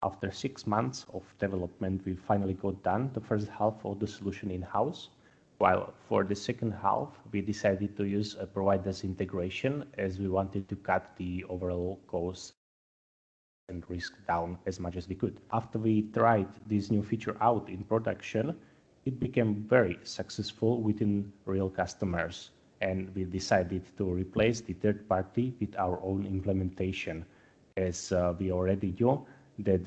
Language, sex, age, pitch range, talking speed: Spanish, male, 30-49, 95-110 Hz, 155 wpm